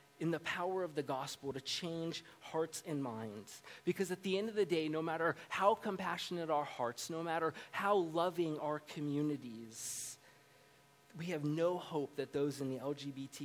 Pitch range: 140-165 Hz